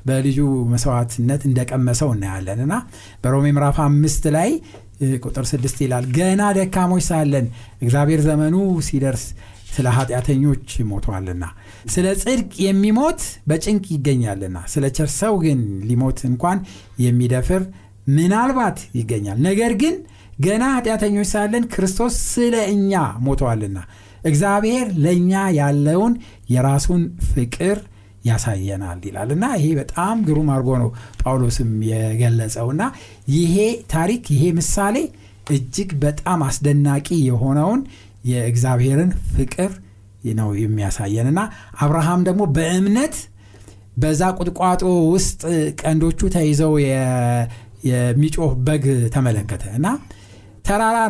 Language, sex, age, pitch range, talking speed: Amharic, male, 60-79, 120-180 Hz, 90 wpm